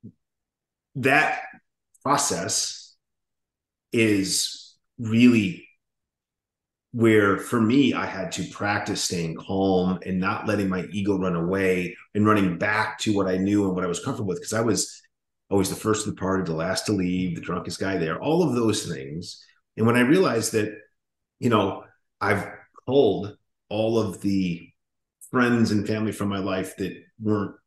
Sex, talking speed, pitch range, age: male, 160 wpm, 95-125 Hz, 30-49